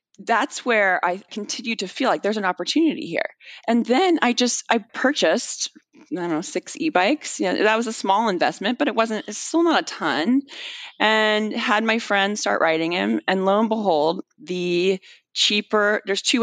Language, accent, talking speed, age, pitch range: English, American, 195 wpm, 30-49, 160-245 Hz